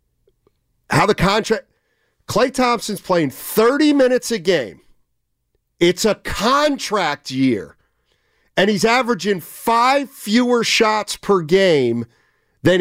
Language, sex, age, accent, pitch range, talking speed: English, male, 50-69, American, 190-260 Hz, 110 wpm